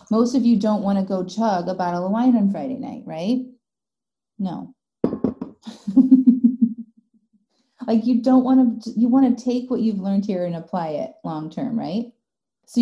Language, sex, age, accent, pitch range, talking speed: English, female, 30-49, American, 180-235 Hz, 175 wpm